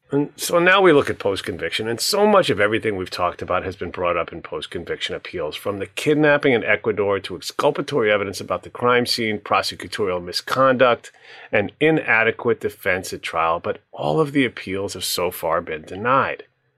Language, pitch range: English, 100-145 Hz